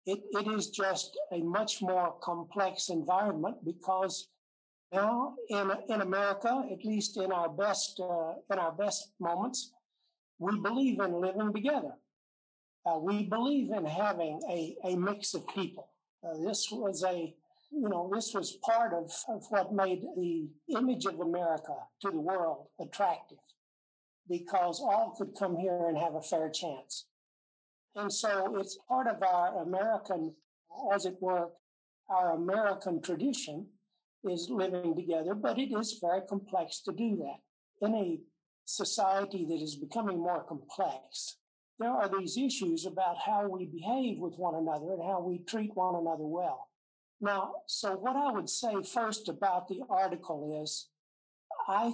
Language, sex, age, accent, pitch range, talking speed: English, male, 60-79, American, 170-210 Hz, 155 wpm